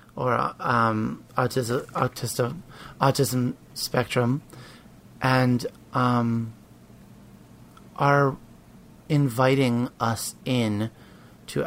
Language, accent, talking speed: English, American, 65 wpm